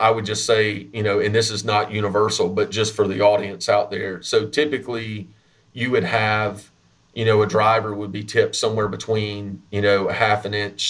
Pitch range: 100-120 Hz